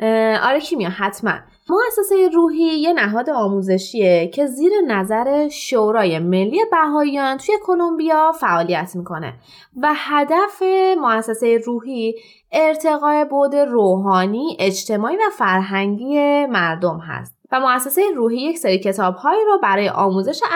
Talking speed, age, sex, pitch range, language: 110 wpm, 20-39, female, 205-325 Hz, Persian